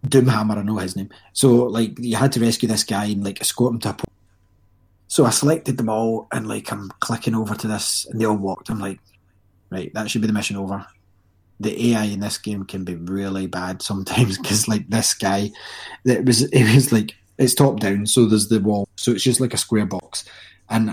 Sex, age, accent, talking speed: male, 20-39, British, 225 wpm